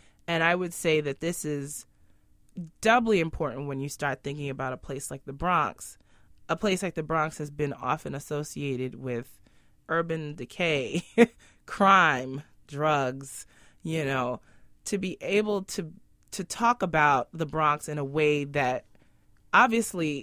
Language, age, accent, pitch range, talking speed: English, 20-39, American, 135-180 Hz, 145 wpm